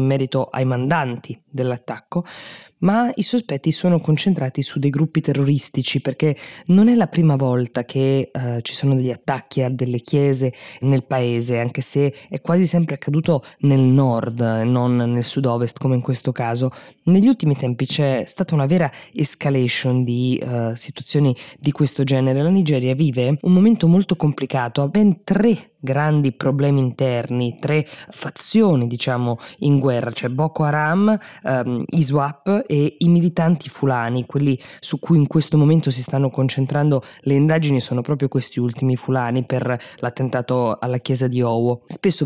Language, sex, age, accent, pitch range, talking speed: Italian, female, 20-39, native, 130-160 Hz, 160 wpm